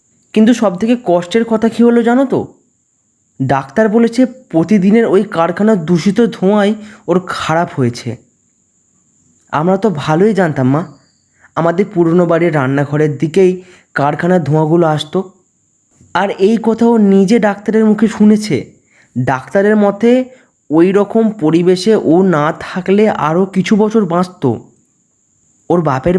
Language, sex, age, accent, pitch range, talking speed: Bengali, male, 20-39, native, 160-215 Hz, 120 wpm